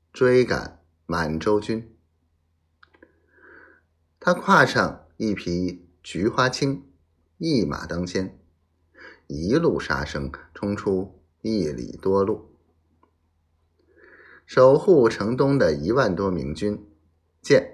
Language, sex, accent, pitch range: Chinese, male, native, 80-105 Hz